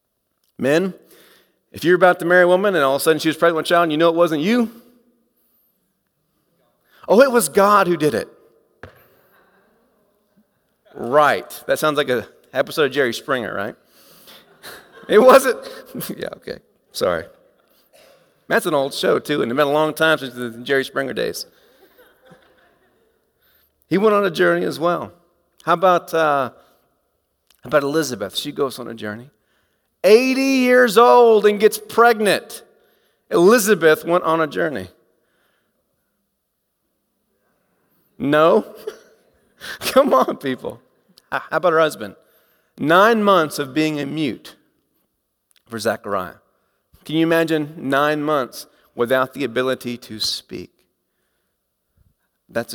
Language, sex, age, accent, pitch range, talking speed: English, male, 40-59, American, 140-225 Hz, 135 wpm